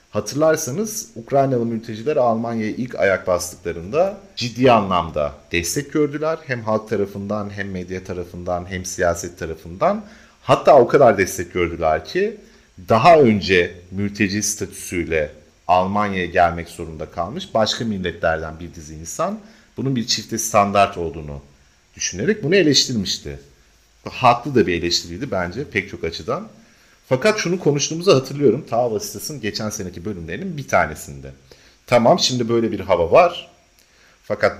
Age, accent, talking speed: 40-59, native, 125 wpm